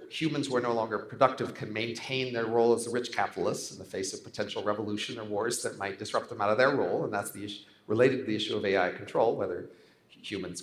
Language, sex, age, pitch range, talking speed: English, male, 50-69, 110-140 Hz, 245 wpm